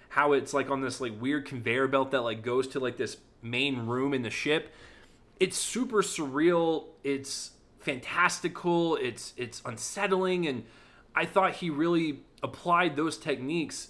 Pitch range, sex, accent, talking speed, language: 120-150 Hz, male, American, 155 wpm, English